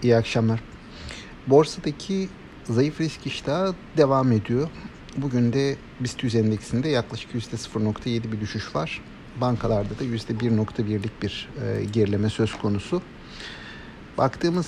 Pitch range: 110-130 Hz